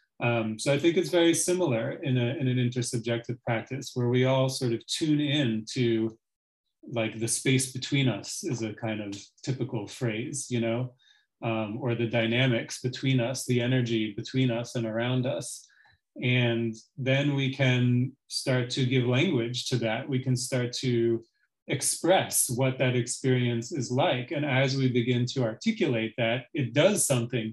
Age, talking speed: 30-49, 165 wpm